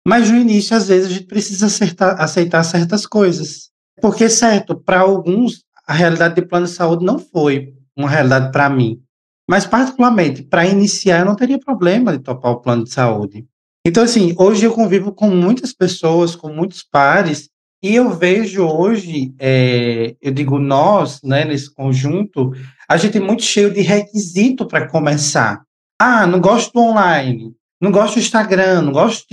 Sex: male